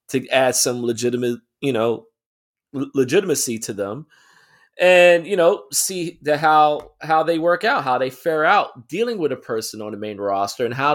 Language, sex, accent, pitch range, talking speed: English, male, American, 125-185 Hz, 185 wpm